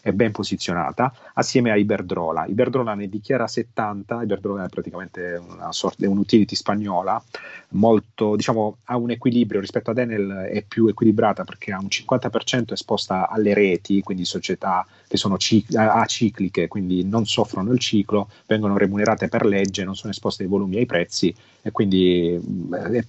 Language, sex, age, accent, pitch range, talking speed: Italian, male, 30-49, native, 100-120 Hz, 155 wpm